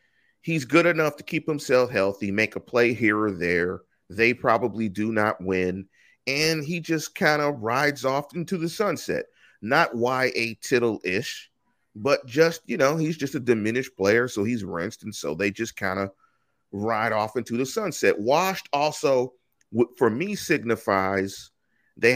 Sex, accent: male, American